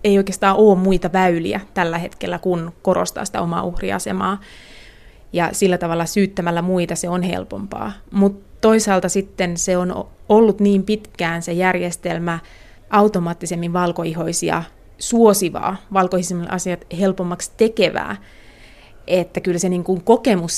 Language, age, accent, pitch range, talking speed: Finnish, 20-39, native, 170-190 Hz, 120 wpm